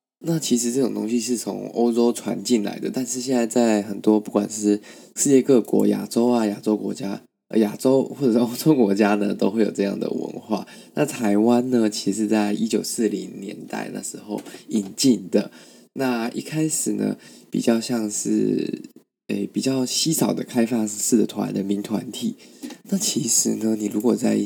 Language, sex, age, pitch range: Chinese, male, 20-39, 105-125 Hz